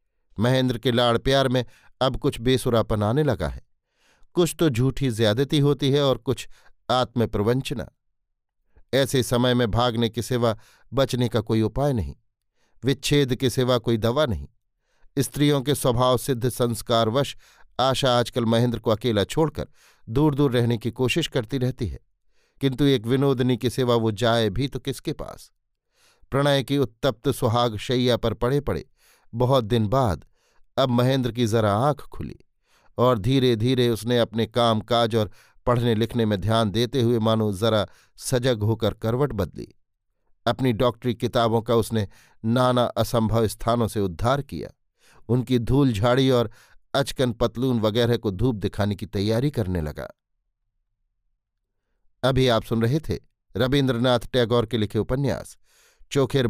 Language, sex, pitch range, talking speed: Hindi, male, 115-130 Hz, 150 wpm